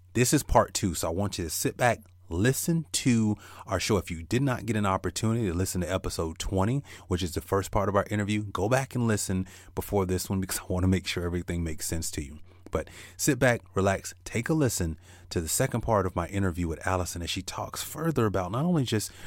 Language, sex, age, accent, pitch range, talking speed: English, male, 30-49, American, 85-105 Hz, 240 wpm